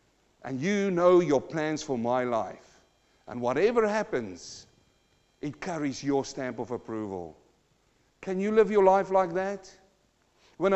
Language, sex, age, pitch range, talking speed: English, male, 50-69, 170-235 Hz, 140 wpm